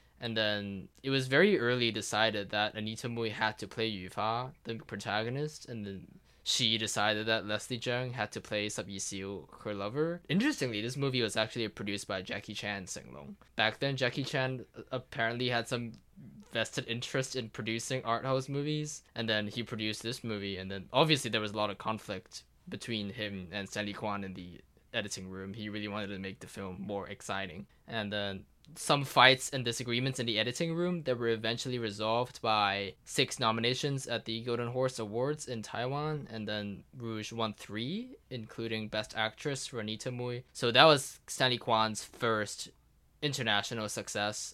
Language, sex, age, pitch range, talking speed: English, male, 20-39, 105-130 Hz, 175 wpm